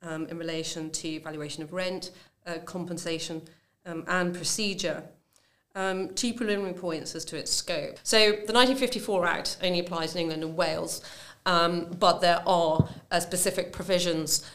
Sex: female